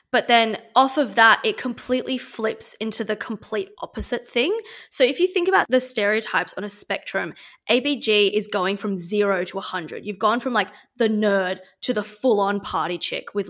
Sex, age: female, 20-39